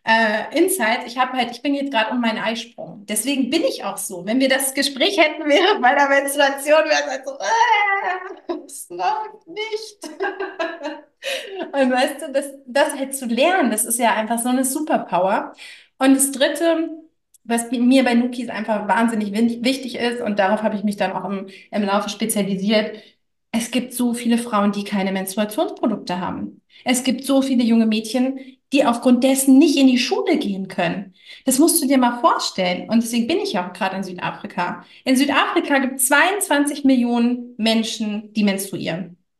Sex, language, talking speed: female, English, 180 wpm